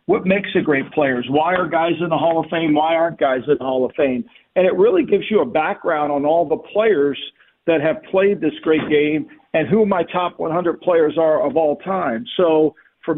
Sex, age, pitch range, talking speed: male, 50-69, 150-200 Hz, 230 wpm